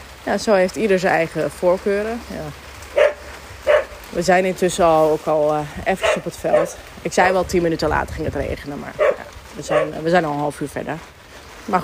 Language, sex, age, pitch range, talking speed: Dutch, female, 20-39, 160-200 Hz, 210 wpm